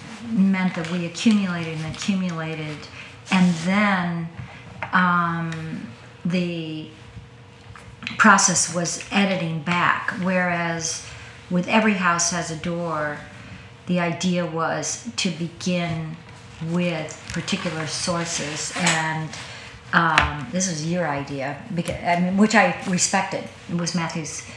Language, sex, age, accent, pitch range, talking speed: English, female, 50-69, American, 150-180 Hz, 100 wpm